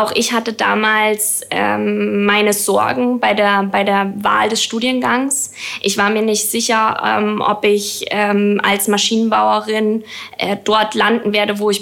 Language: German